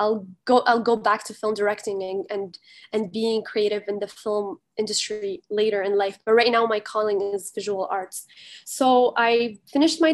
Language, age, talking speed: English, 10-29, 190 wpm